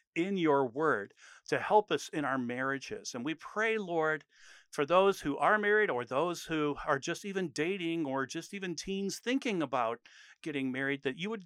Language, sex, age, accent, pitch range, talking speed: English, male, 50-69, American, 135-190 Hz, 190 wpm